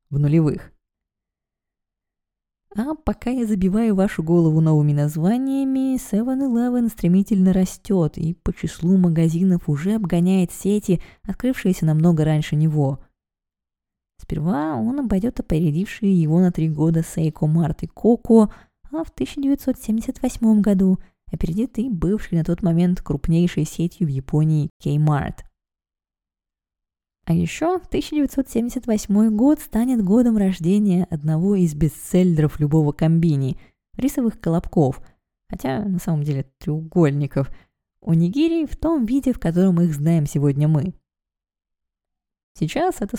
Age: 20-39